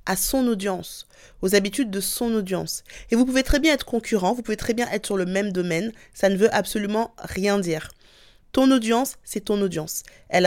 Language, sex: French, female